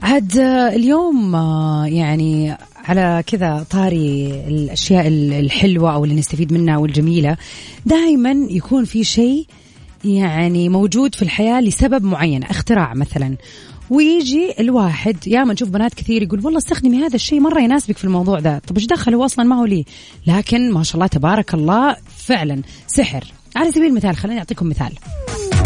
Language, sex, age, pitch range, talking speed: Arabic, female, 30-49, 165-245 Hz, 145 wpm